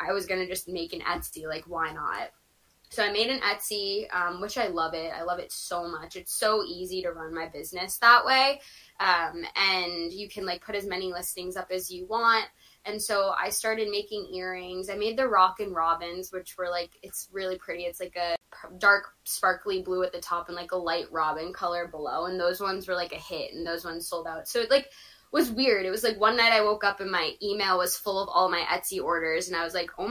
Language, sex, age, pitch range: English, female, 10-29, 175-210 Hz